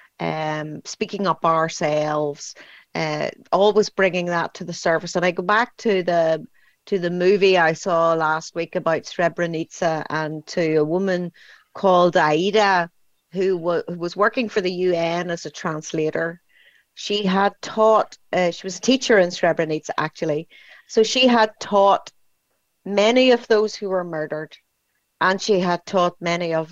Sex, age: female, 30-49